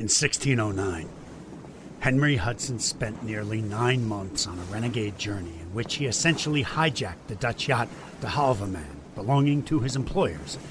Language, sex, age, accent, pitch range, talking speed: English, male, 50-69, American, 90-140 Hz, 145 wpm